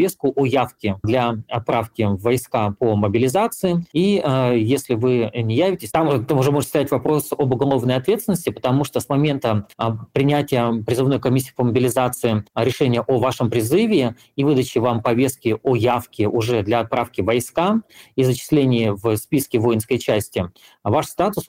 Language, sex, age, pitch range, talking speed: Russian, male, 20-39, 120-145 Hz, 150 wpm